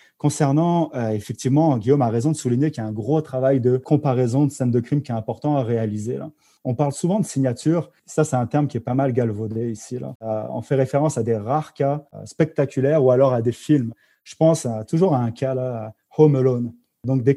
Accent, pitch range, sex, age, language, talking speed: French, 125-150 Hz, male, 30-49, French, 240 wpm